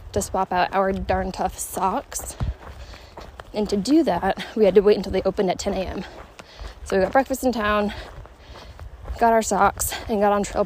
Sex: female